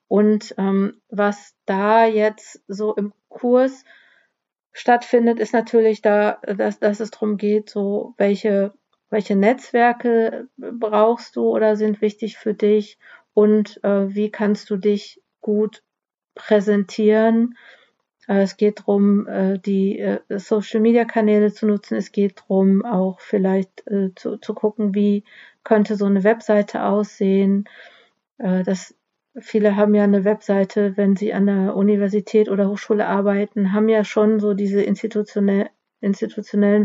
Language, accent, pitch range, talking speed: German, German, 195-215 Hz, 135 wpm